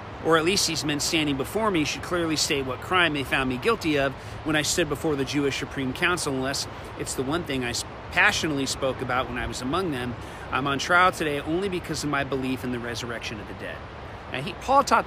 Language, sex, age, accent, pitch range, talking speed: English, male, 40-59, American, 125-165 Hz, 235 wpm